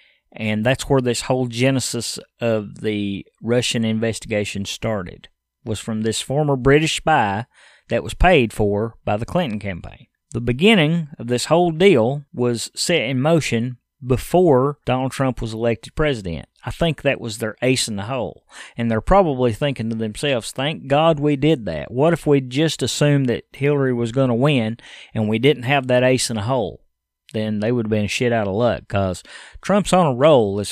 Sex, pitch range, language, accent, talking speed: male, 110-140 Hz, English, American, 190 wpm